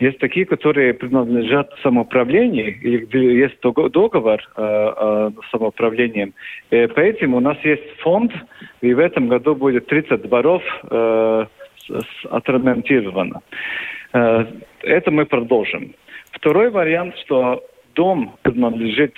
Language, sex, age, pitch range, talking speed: Russian, male, 50-69, 115-145 Hz, 110 wpm